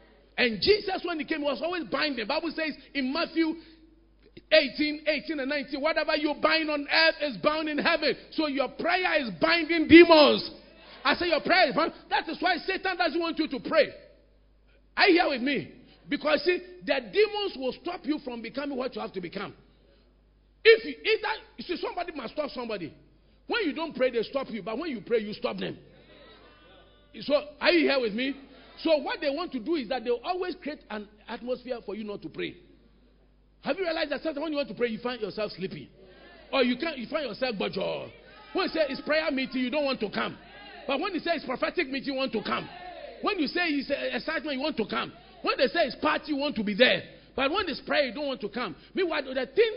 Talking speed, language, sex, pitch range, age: 225 wpm, English, male, 255-330 Hz, 50-69